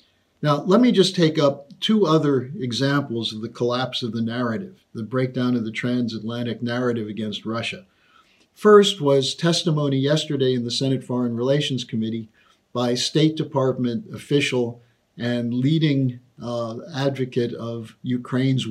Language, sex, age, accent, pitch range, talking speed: English, male, 50-69, American, 120-155 Hz, 140 wpm